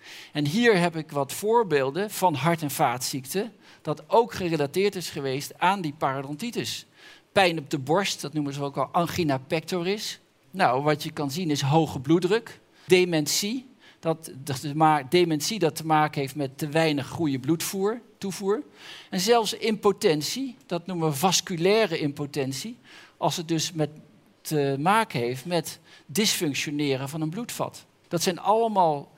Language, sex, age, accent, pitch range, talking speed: Dutch, male, 50-69, Dutch, 145-185 Hz, 150 wpm